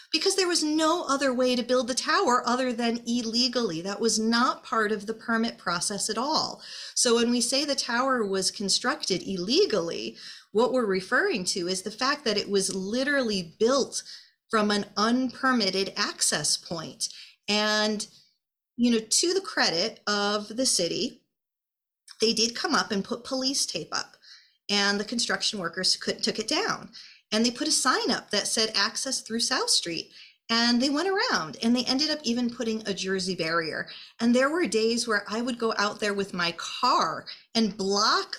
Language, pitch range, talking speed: English, 195-255 Hz, 180 wpm